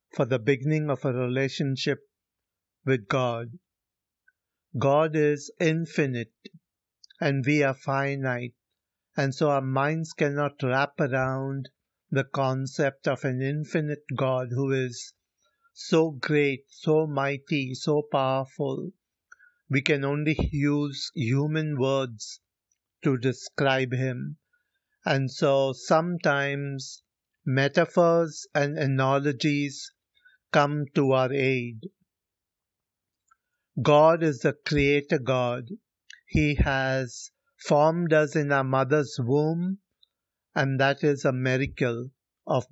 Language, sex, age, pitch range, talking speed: Hindi, male, 60-79, 130-155 Hz, 105 wpm